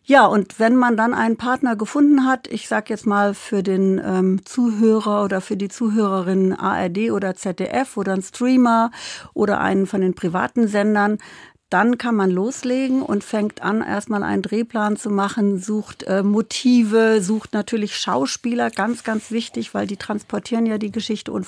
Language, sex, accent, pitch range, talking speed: German, female, German, 185-230 Hz, 170 wpm